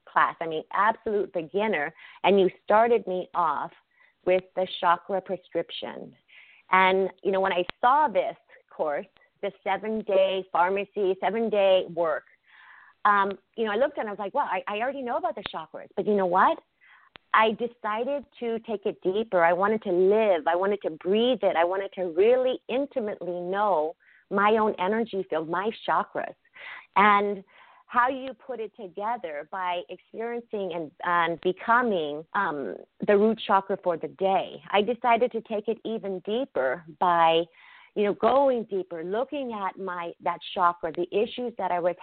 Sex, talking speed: female, 165 wpm